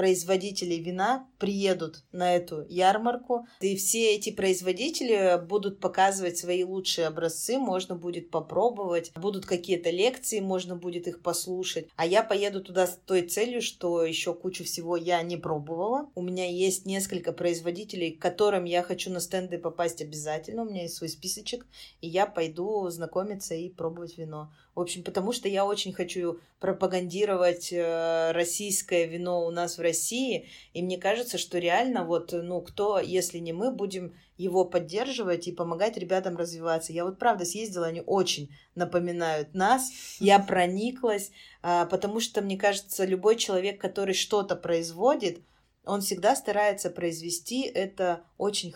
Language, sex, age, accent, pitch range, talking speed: Russian, female, 20-39, native, 170-200 Hz, 150 wpm